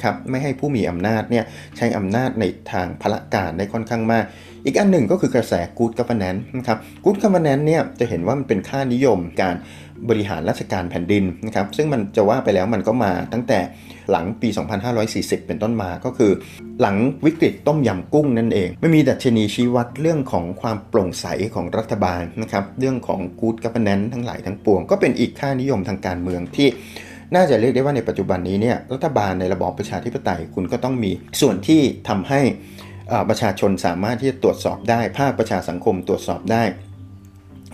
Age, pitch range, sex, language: 30-49, 95-125 Hz, male, Thai